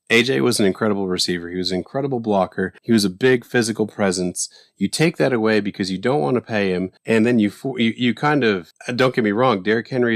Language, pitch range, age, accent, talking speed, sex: English, 100-135 Hz, 30-49, American, 240 wpm, male